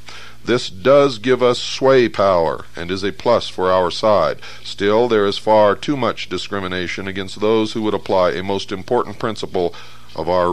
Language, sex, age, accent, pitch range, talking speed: English, male, 60-79, American, 95-120 Hz, 175 wpm